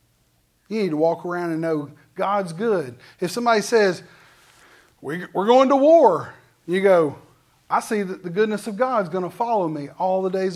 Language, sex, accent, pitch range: English, male, American, 175-240 Hz